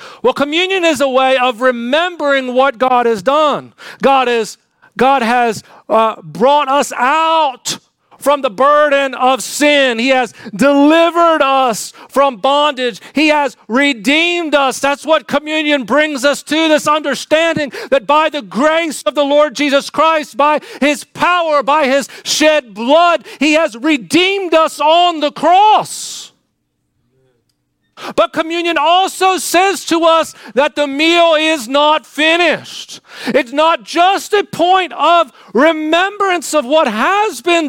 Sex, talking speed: male, 140 wpm